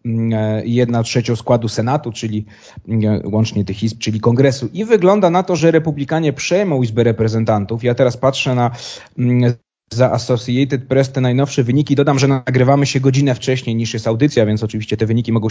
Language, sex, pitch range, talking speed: Polish, male, 115-140 Hz, 165 wpm